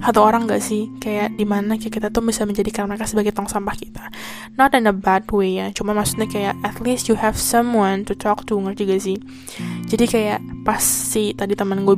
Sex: female